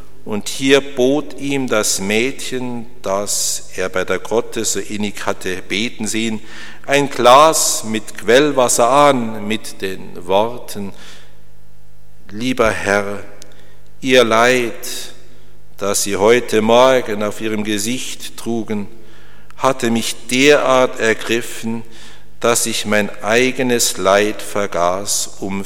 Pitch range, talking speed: 105-130 Hz, 110 wpm